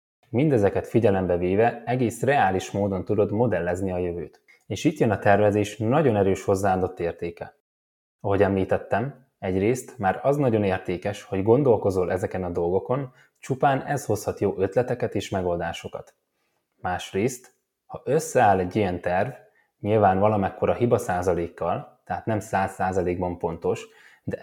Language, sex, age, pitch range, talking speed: Hungarian, male, 20-39, 95-120 Hz, 135 wpm